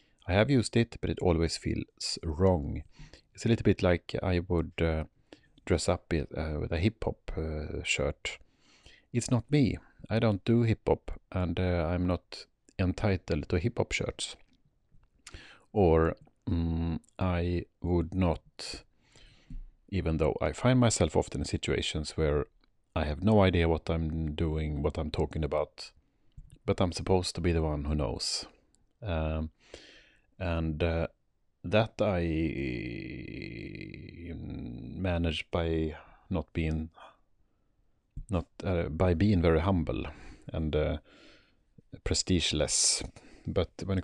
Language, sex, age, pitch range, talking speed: Swedish, male, 40-59, 80-100 Hz, 130 wpm